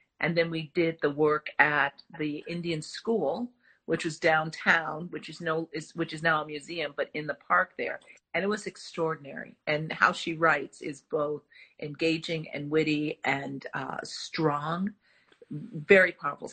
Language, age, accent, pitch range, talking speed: English, 50-69, American, 155-190 Hz, 155 wpm